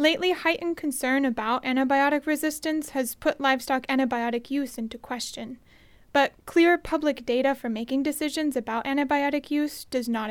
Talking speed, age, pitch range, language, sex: 145 wpm, 30-49, 235-290 Hz, English, female